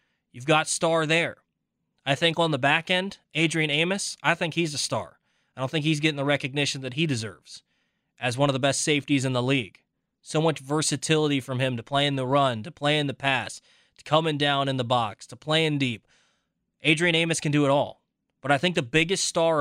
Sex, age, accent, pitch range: male, 20-39, American, 140-165 Hz